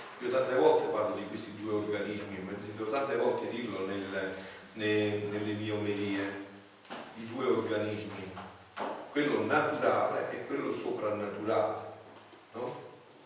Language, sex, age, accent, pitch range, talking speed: Italian, male, 40-59, native, 95-120 Hz, 120 wpm